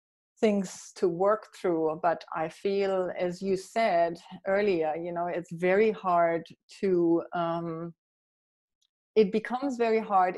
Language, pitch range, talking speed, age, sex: English, 170-195 Hz, 125 wpm, 30-49, female